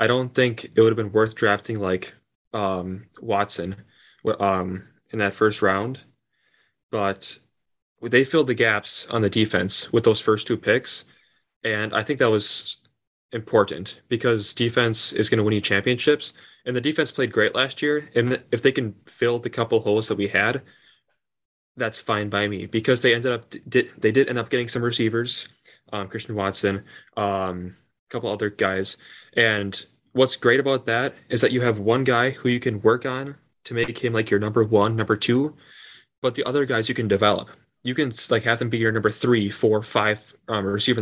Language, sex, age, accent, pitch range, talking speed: English, male, 20-39, American, 105-125 Hz, 190 wpm